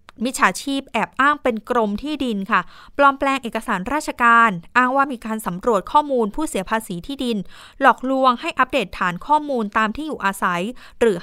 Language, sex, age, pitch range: Thai, female, 20-39, 210-255 Hz